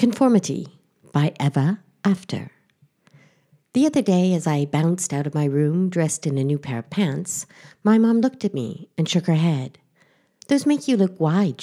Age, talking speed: 60-79, 180 wpm